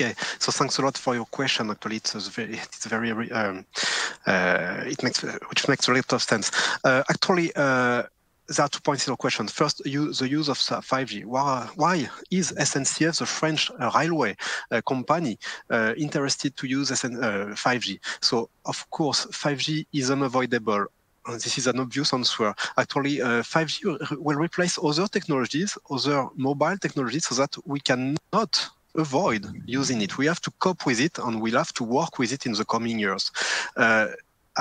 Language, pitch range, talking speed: English, 120-160 Hz, 160 wpm